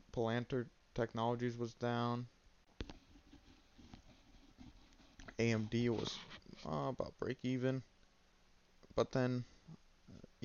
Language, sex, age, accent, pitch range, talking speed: English, male, 20-39, American, 95-120 Hz, 75 wpm